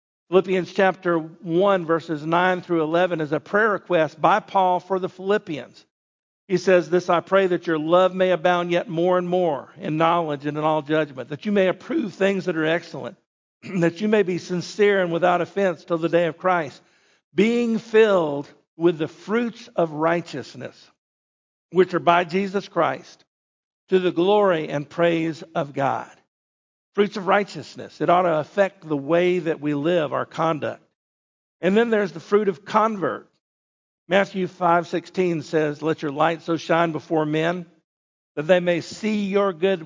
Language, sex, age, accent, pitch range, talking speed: English, male, 50-69, American, 155-190 Hz, 170 wpm